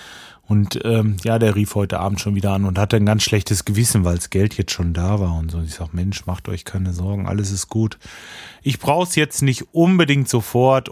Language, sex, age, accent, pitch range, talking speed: German, male, 30-49, German, 95-120 Hz, 230 wpm